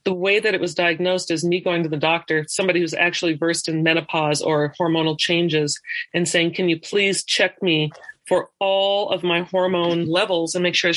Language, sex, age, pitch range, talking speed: English, female, 40-59, 170-220 Hz, 200 wpm